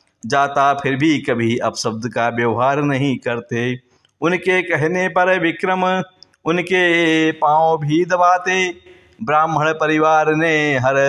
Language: Hindi